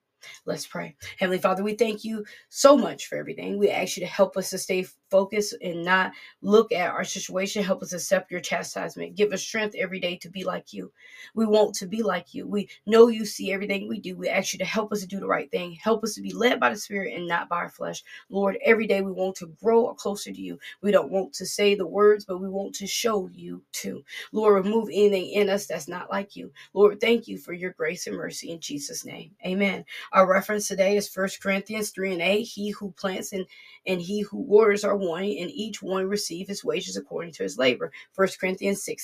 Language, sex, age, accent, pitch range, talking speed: English, female, 20-39, American, 185-210 Hz, 235 wpm